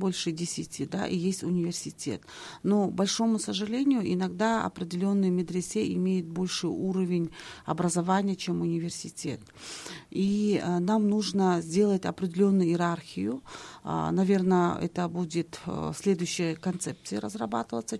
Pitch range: 170-195 Hz